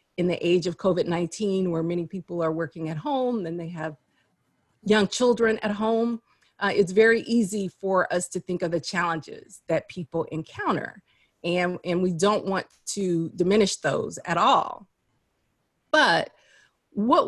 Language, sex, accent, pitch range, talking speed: English, female, American, 175-225 Hz, 155 wpm